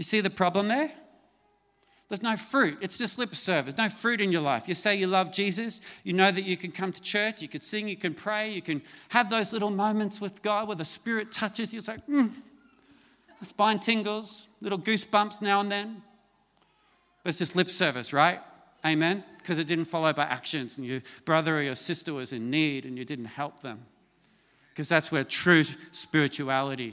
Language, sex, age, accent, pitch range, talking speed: English, male, 40-59, Australian, 145-200 Hz, 205 wpm